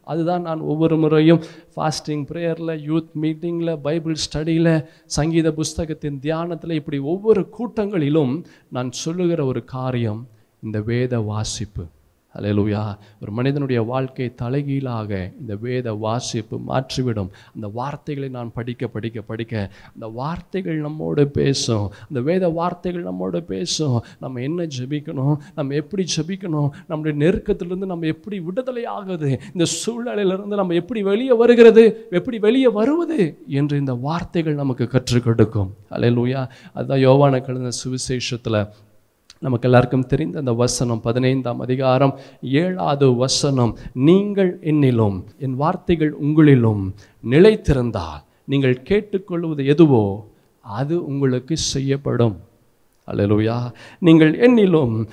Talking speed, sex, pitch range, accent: 110 wpm, male, 120-170 Hz, native